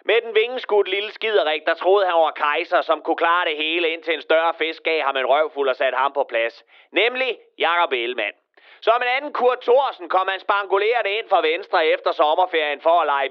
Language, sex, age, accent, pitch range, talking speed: Danish, male, 30-49, native, 170-265 Hz, 210 wpm